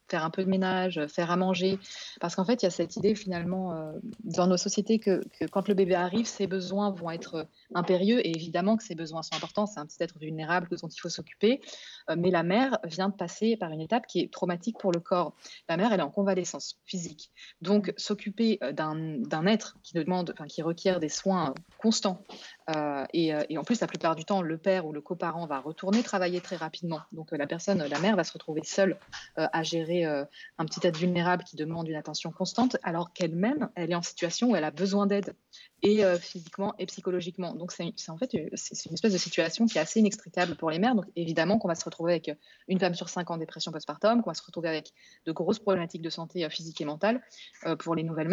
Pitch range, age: 165-200 Hz, 20-39